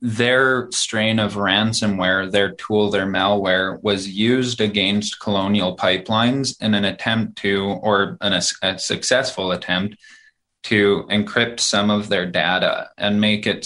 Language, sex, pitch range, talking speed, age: English, male, 95-110 Hz, 135 wpm, 20-39